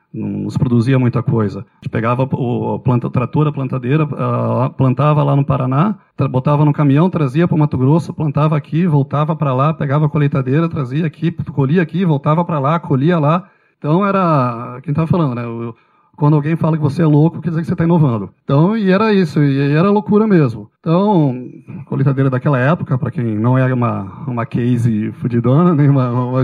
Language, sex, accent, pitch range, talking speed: Portuguese, male, Brazilian, 135-170 Hz, 195 wpm